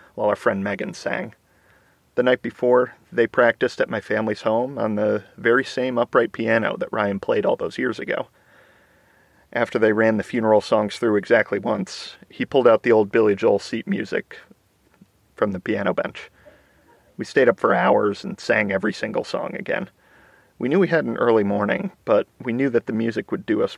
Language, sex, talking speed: English, male, 190 wpm